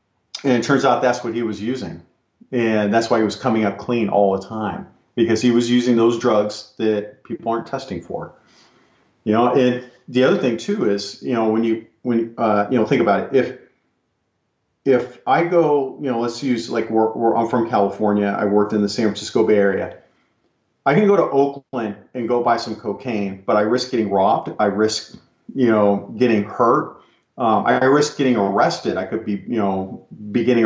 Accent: American